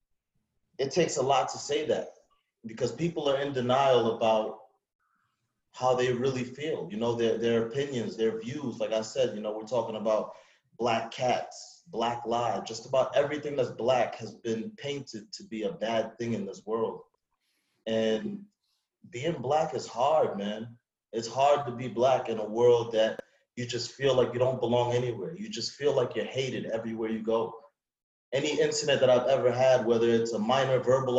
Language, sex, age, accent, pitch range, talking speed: English, male, 30-49, American, 115-130 Hz, 185 wpm